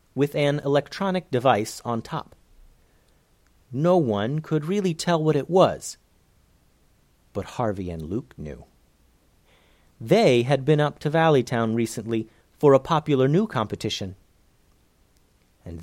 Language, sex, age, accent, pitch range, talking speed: English, male, 40-59, American, 105-150 Hz, 120 wpm